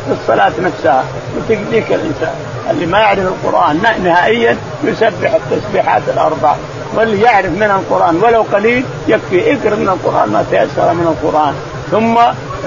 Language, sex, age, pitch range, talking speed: Arabic, male, 50-69, 150-210 Hz, 135 wpm